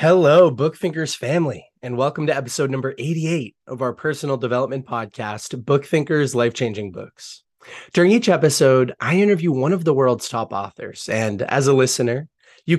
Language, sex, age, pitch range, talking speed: English, male, 20-39, 120-160 Hz, 160 wpm